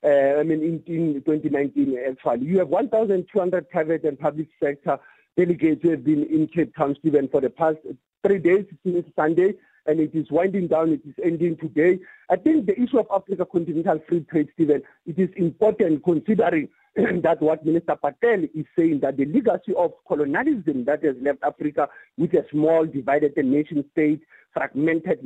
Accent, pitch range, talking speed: South African, 155-200 Hz, 180 wpm